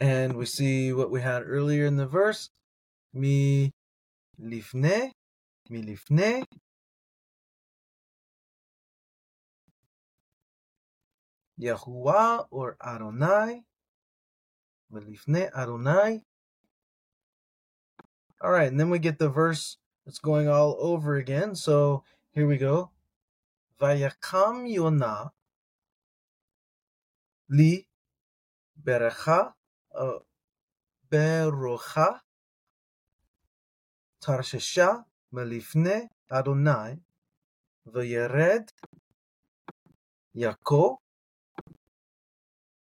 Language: English